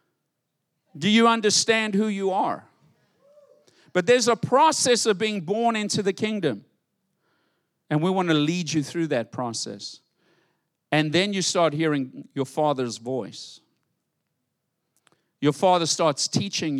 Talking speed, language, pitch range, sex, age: 130 wpm, English, 155-200 Hz, male, 50-69